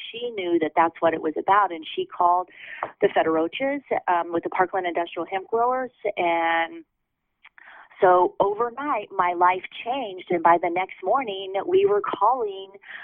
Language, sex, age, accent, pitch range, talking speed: English, female, 30-49, American, 175-260 Hz, 155 wpm